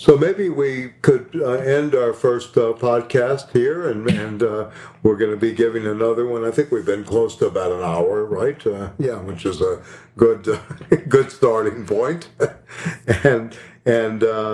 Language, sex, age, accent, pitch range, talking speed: English, male, 60-79, American, 110-135 Hz, 180 wpm